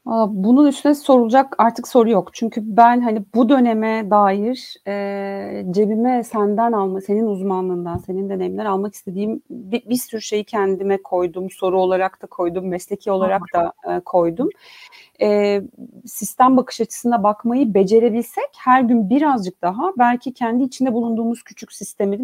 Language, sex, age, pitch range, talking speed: Turkish, female, 40-59, 195-245 Hz, 140 wpm